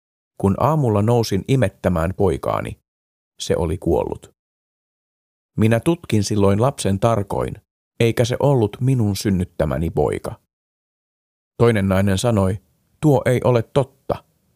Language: Finnish